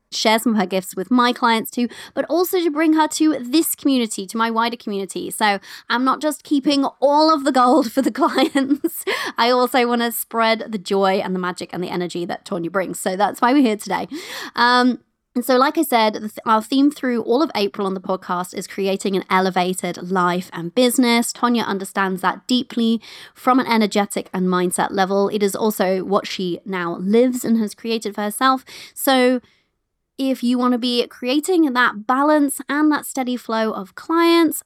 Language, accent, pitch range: English, British, 195-260 Hz